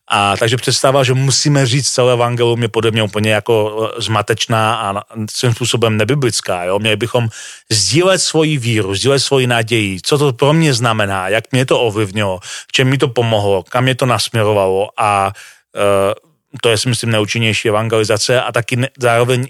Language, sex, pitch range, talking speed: Slovak, male, 110-130 Hz, 170 wpm